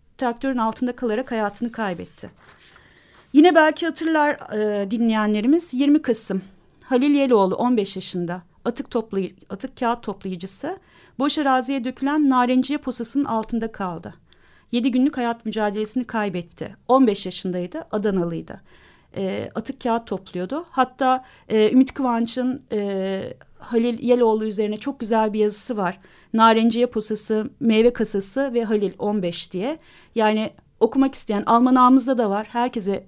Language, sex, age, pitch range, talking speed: Turkish, female, 40-59, 205-255 Hz, 125 wpm